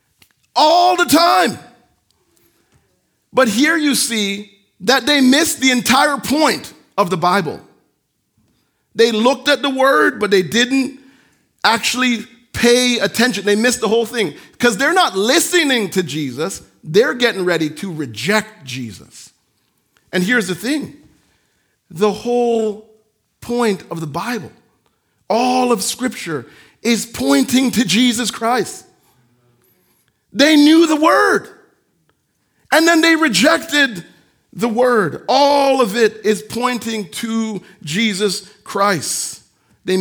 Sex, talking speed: male, 120 wpm